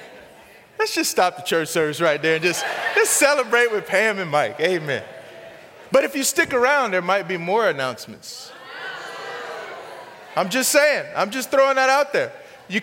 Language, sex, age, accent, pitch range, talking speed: English, male, 30-49, American, 175-260 Hz, 175 wpm